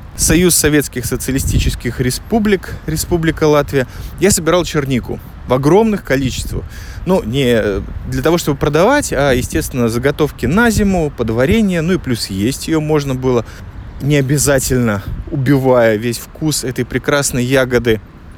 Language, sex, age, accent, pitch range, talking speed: Russian, male, 20-39, native, 125-160 Hz, 130 wpm